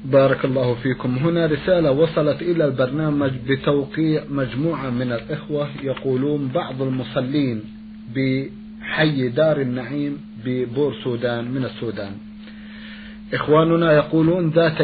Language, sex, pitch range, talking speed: Arabic, male, 130-165 Hz, 100 wpm